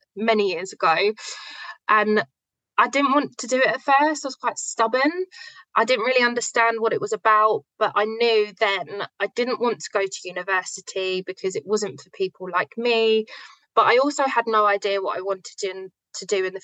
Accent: British